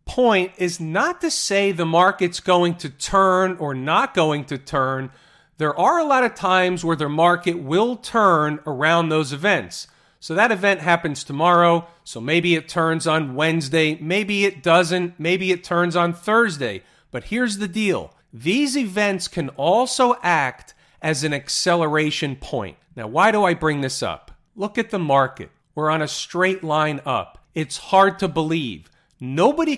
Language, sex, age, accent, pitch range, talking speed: English, male, 40-59, American, 150-195 Hz, 165 wpm